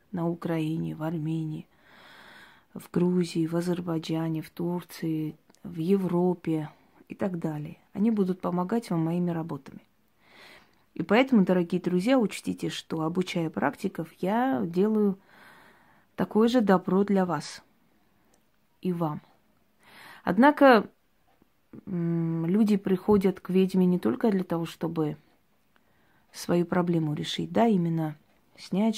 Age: 30-49